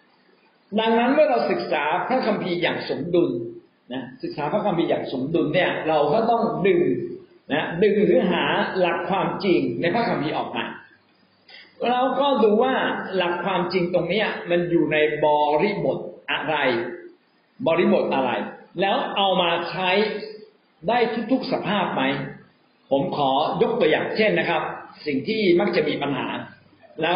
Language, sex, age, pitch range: Thai, male, 60-79, 175-245 Hz